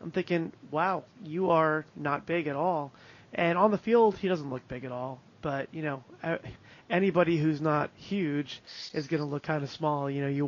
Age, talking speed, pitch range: 30-49, 205 wpm, 145-195 Hz